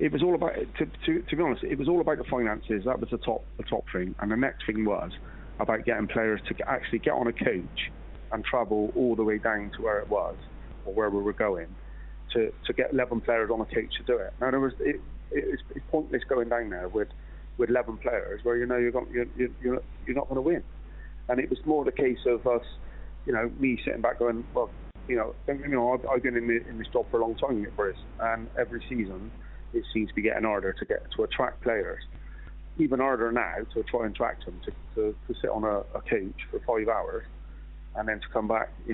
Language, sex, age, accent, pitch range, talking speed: English, male, 30-49, British, 110-135 Hz, 240 wpm